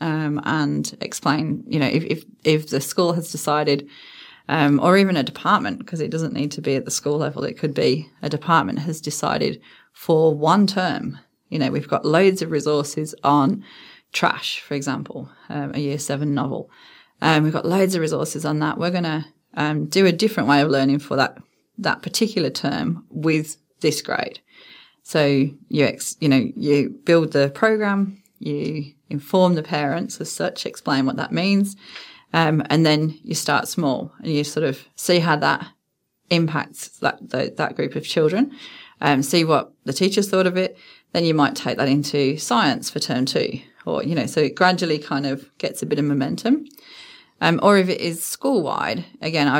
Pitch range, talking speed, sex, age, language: 145-180 Hz, 190 wpm, female, 30-49, English